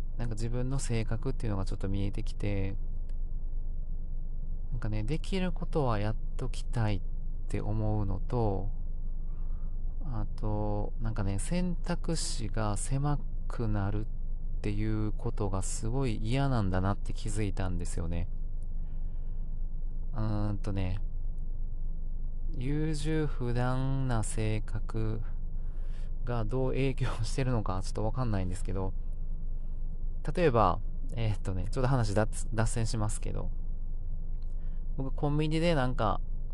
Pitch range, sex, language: 90-115 Hz, male, Japanese